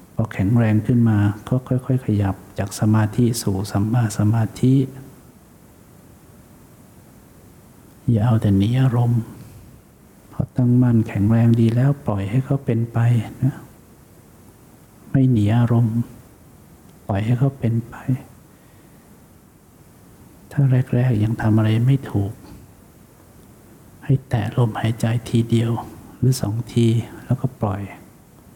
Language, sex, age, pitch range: English, male, 60-79, 110-130 Hz